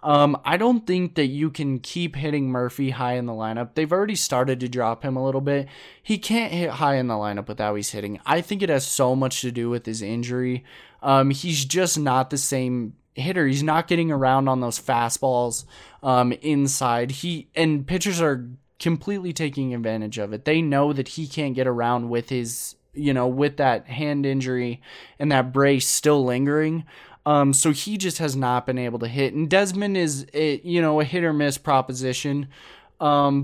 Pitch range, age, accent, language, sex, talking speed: 125-155 Hz, 20-39, American, English, male, 200 wpm